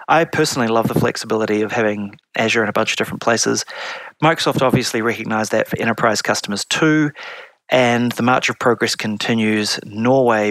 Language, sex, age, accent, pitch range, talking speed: English, male, 30-49, Australian, 110-145 Hz, 165 wpm